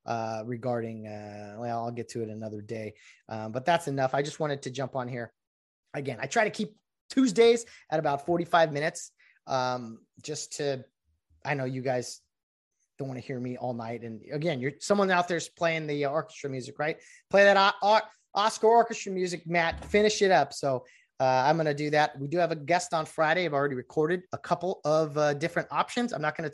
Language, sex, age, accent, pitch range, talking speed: English, male, 30-49, American, 125-165 Hz, 210 wpm